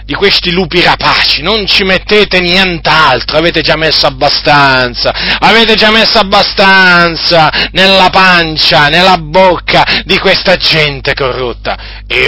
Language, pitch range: Italian, 145-205 Hz